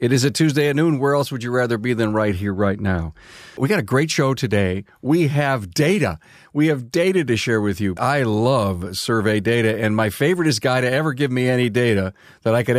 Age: 50-69